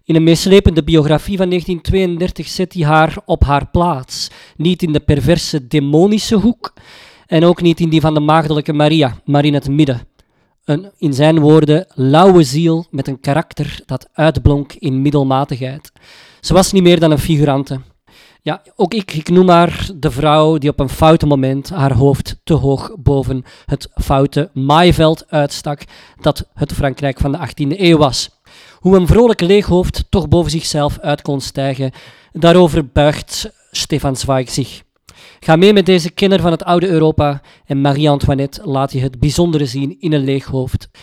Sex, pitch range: male, 140-175 Hz